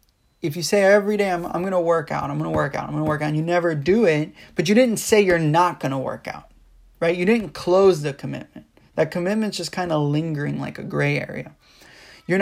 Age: 20-39